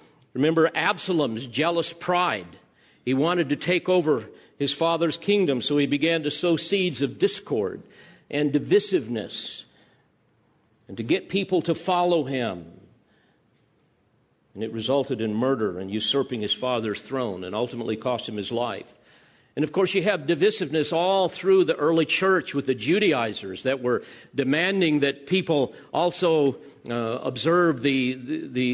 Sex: male